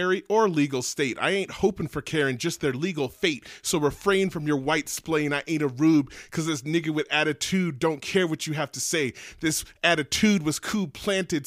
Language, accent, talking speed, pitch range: English, American, 195 wpm, 140-165 Hz